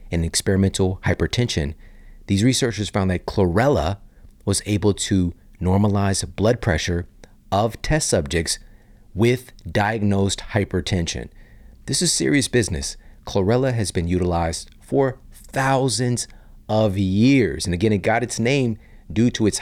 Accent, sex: American, male